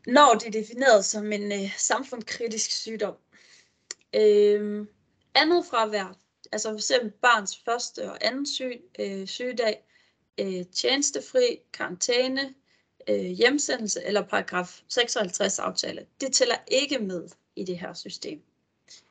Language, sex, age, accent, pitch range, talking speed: Danish, female, 30-49, native, 200-260 Hz, 105 wpm